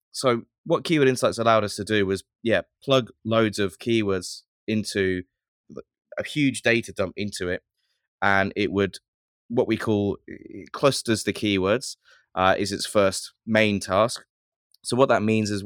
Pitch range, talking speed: 95-115 Hz, 155 wpm